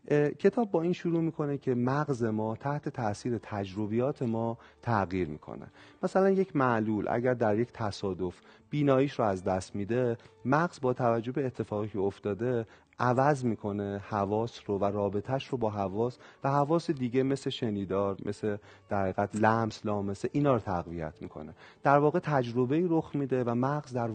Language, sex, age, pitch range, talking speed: Persian, male, 30-49, 105-140 Hz, 160 wpm